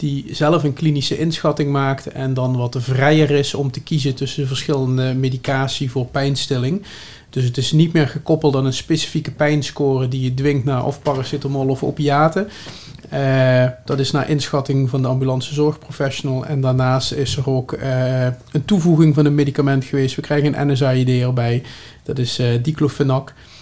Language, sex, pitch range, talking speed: Dutch, male, 130-145 Hz, 170 wpm